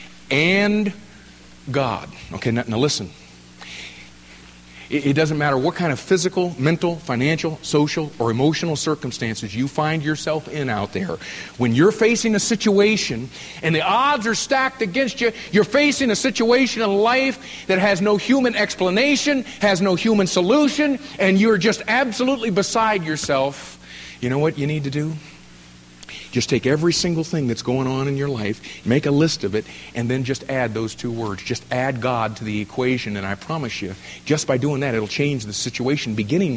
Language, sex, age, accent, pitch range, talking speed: English, male, 50-69, American, 125-190 Hz, 175 wpm